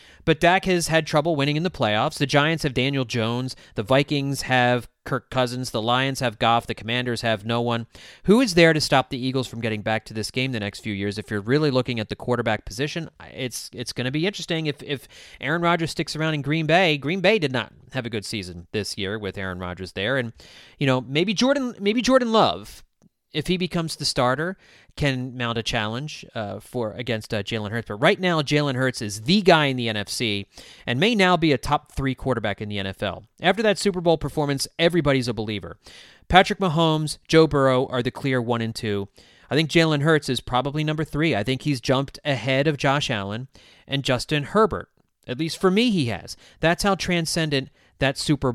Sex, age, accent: male, 30-49, American